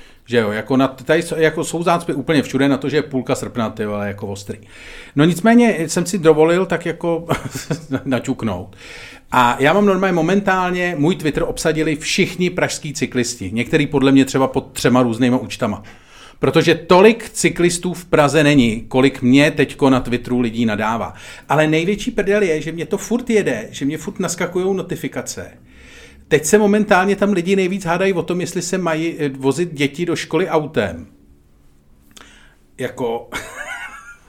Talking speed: 160 wpm